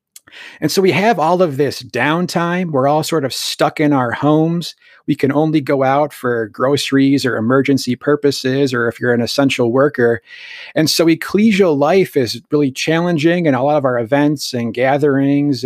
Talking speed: 180 wpm